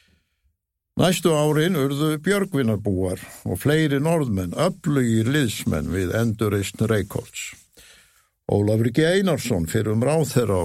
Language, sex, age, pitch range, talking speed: English, male, 60-79, 100-140 Hz, 95 wpm